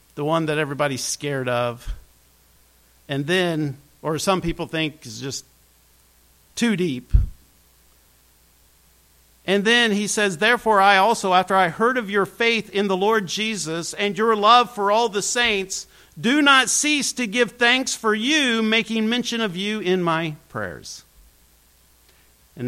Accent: American